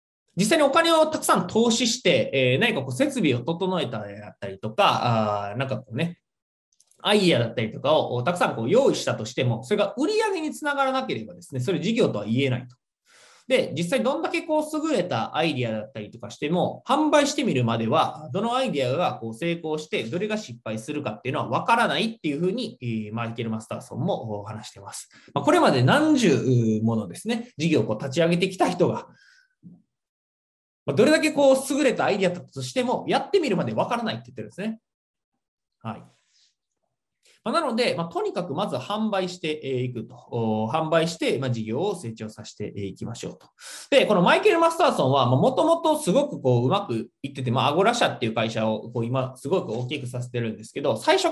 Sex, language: male, Japanese